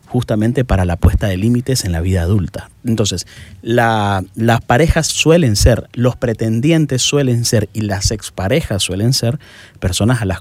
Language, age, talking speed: Spanish, 30-49, 155 wpm